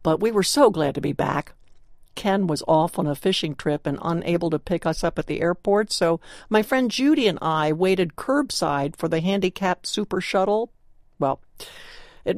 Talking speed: 190 wpm